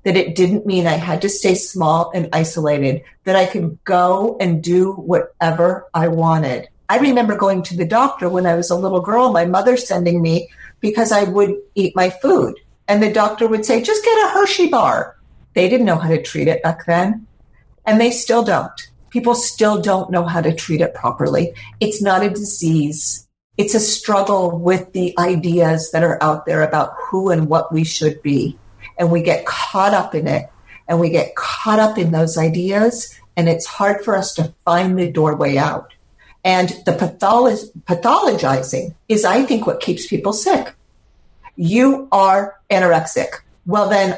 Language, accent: English, American